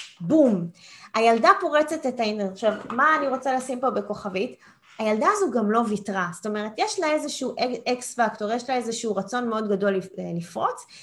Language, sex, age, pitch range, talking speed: Hebrew, female, 20-39, 210-300 Hz, 175 wpm